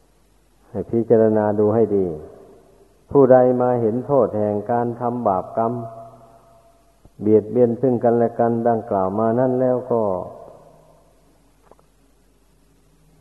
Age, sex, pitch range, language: 50-69, male, 110-125 Hz, Thai